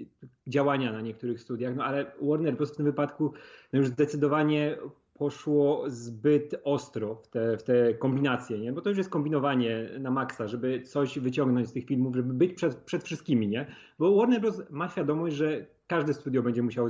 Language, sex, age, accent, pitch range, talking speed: Polish, male, 30-49, native, 130-160 Hz, 180 wpm